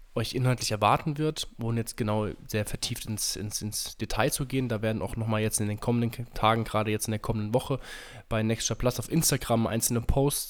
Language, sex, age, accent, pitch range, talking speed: German, male, 20-39, German, 105-120 Hz, 215 wpm